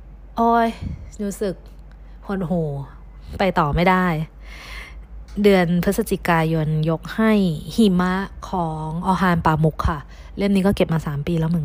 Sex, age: female, 20-39